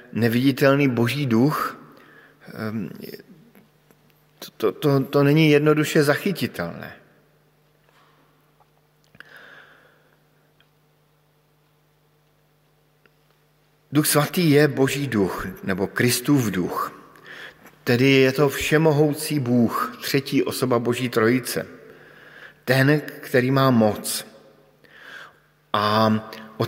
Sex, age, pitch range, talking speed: male, 50-69, 120-150 Hz, 70 wpm